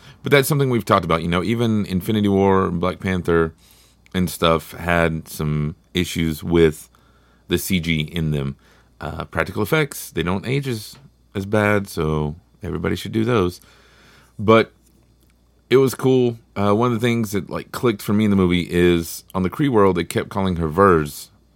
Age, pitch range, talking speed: 30-49, 85-110 Hz, 180 wpm